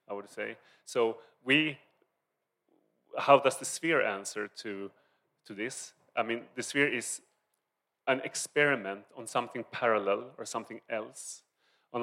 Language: English